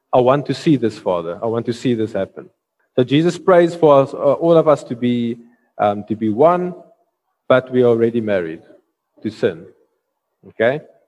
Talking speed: 190 wpm